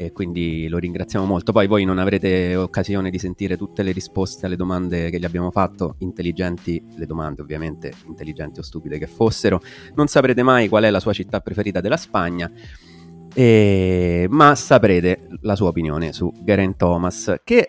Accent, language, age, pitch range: native, Italian, 30-49, 85-105 Hz